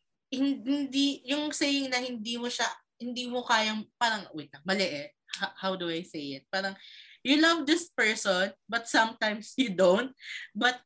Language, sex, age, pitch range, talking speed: Filipino, female, 20-39, 195-280 Hz, 165 wpm